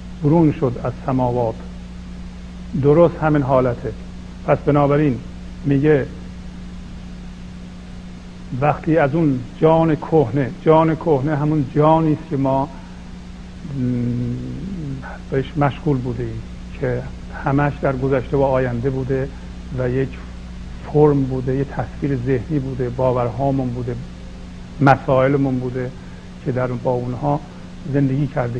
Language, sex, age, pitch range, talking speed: Persian, male, 50-69, 90-145 Hz, 105 wpm